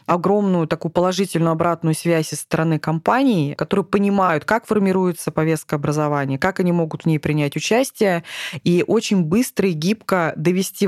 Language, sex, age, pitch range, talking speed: Russian, female, 20-39, 155-190 Hz, 150 wpm